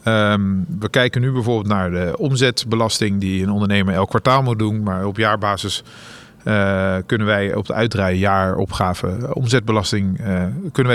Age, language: 40-59, Dutch